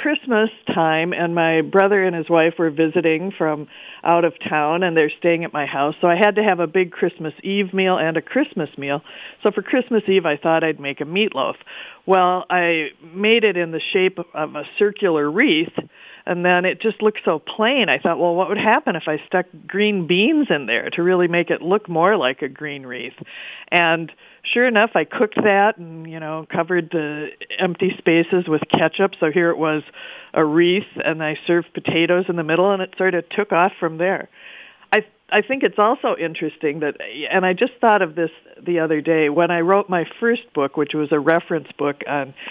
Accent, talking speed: American, 210 wpm